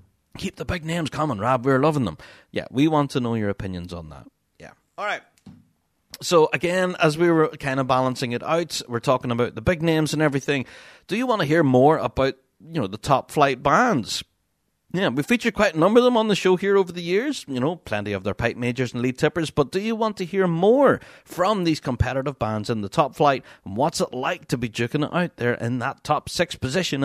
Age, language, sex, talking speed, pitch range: 30-49, English, male, 235 wpm, 120-165 Hz